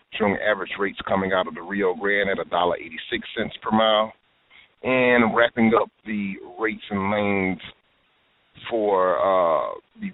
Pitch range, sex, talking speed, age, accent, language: 100-115 Hz, male, 155 wpm, 30-49, American, English